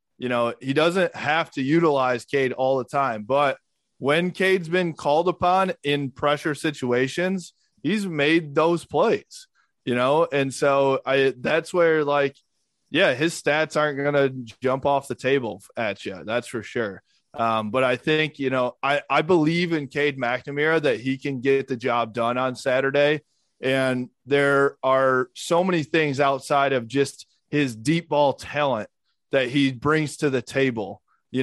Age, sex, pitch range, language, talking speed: 20-39, male, 135-160 Hz, English, 170 wpm